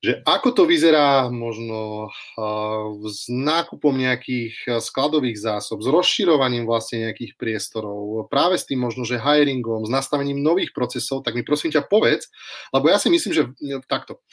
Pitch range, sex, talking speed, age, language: 120-145 Hz, male, 150 wpm, 30-49, Slovak